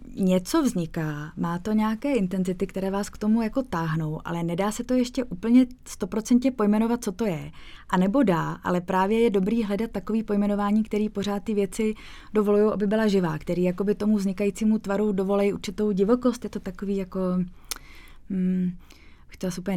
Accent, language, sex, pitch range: native, Czech, female, 190-215 Hz